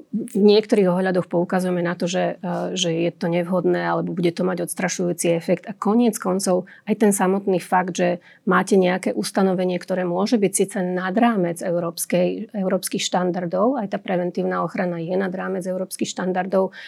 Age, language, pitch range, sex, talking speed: 30-49, Slovak, 180-210 Hz, female, 160 wpm